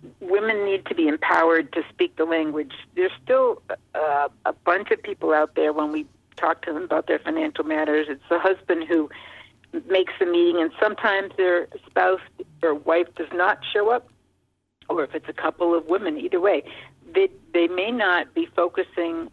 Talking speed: 185 wpm